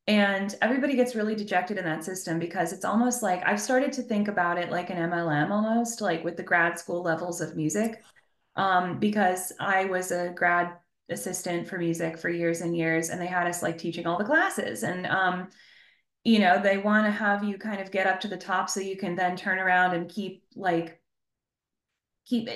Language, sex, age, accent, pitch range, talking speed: English, female, 20-39, American, 175-205 Hz, 205 wpm